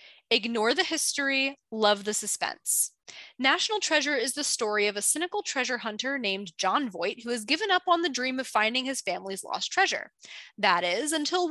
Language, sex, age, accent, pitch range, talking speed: English, female, 20-39, American, 225-320 Hz, 180 wpm